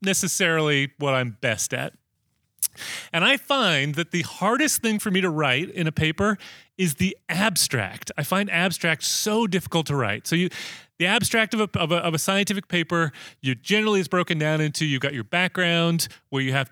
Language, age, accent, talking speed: English, 30-49, American, 195 wpm